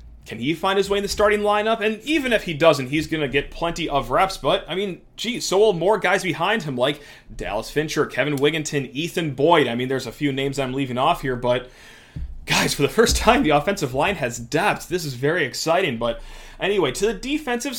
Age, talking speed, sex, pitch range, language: 30-49, 230 wpm, male, 140-195 Hz, English